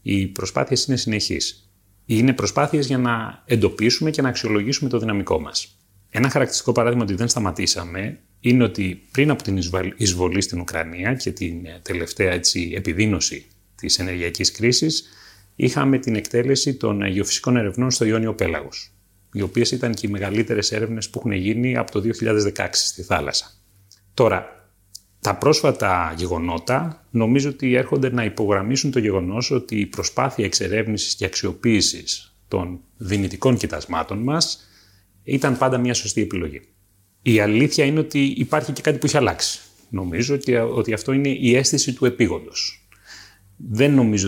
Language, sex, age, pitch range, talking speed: Greek, male, 30-49, 95-125 Hz, 145 wpm